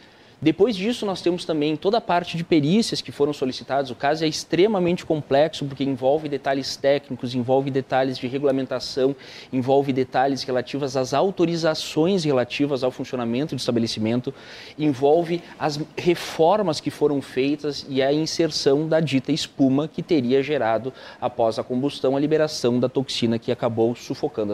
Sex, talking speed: male, 150 wpm